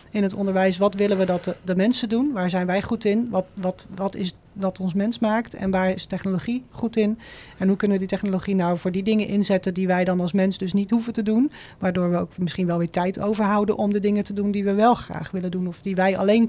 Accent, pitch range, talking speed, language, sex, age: Dutch, 185-210 Hz, 265 wpm, Dutch, female, 40-59